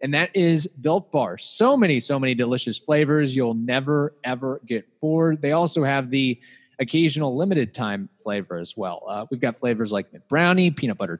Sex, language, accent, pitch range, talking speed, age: male, English, American, 120-150 Hz, 190 wpm, 20-39